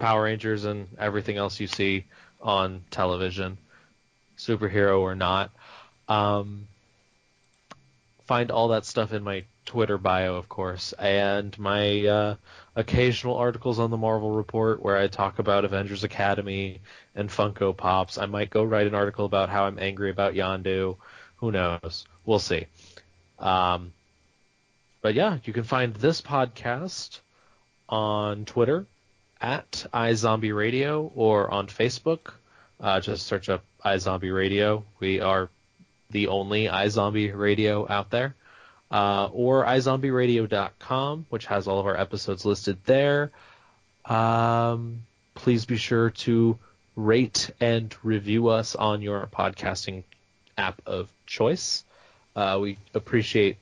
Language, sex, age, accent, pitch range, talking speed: English, male, 20-39, American, 95-115 Hz, 130 wpm